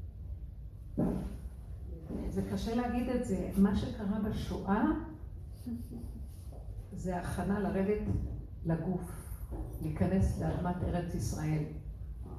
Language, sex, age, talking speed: Hebrew, female, 50-69, 75 wpm